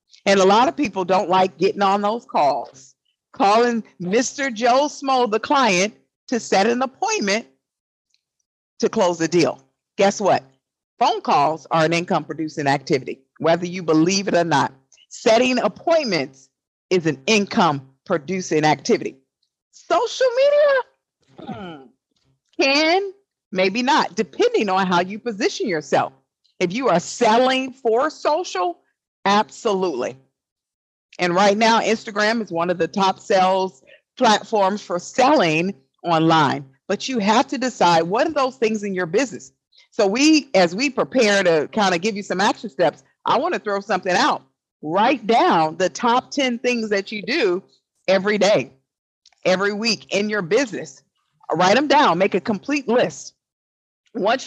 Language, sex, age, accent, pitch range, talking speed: English, female, 50-69, American, 180-255 Hz, 150 wpm